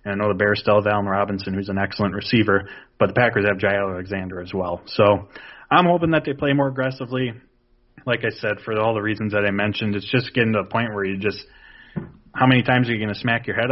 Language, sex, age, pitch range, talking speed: English, male, 30-49, 100-125 Hz, 250 wpm